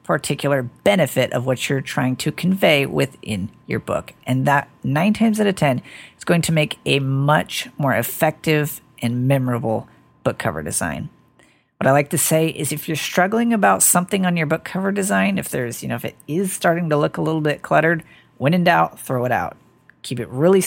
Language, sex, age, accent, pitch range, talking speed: English, female, 40-59, American, 130-165 Hz, 205 wpm